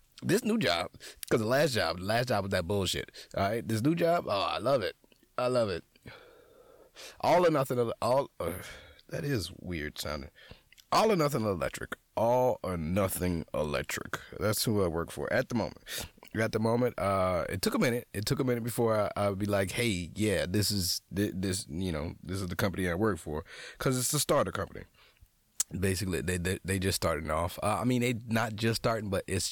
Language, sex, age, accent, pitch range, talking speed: English, male, 30-49, American, 90-115 Hz, 210 wpm